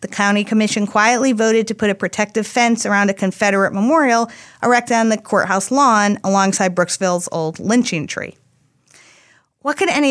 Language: English